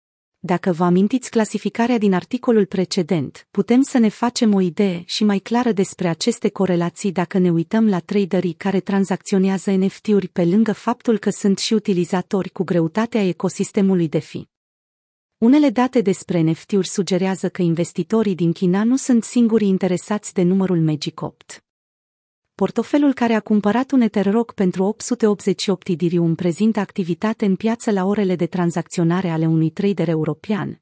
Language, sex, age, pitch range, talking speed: Romanian, female, 30-49, 175-220 Hz, 150 wpm